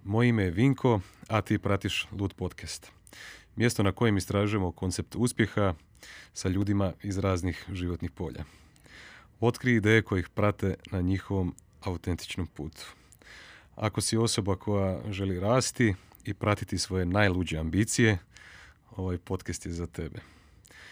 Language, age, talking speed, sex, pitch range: Croatian, 30-49, 130 wpm, male, 90-105 Hz